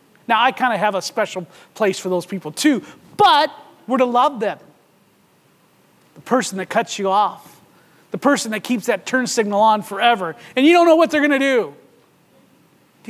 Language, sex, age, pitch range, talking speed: English, male, 40-59, 190-260 Hz, 195 wpm